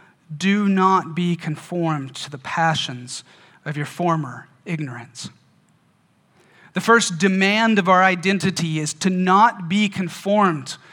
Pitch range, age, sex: 160-205 Hz, 30-49, male